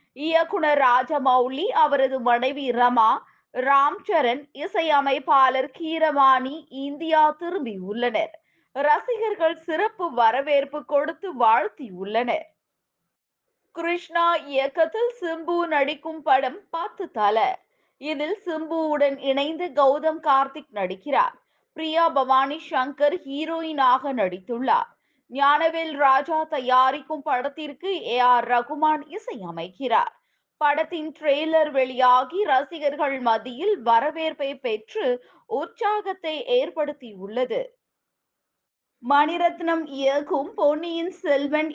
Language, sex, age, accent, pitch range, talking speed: Tamil, female, 20-39, native, 270-335 Hz, 80 wpm